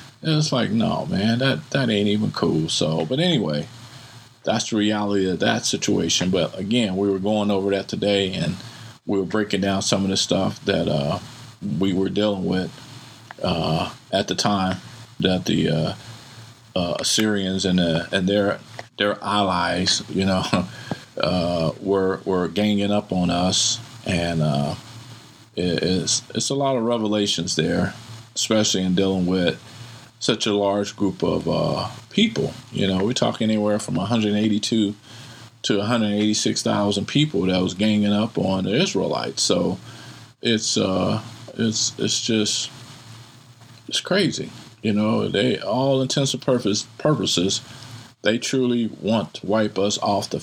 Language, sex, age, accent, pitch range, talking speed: English, male, 40-59, American, 95-120 Hz, 150 wpm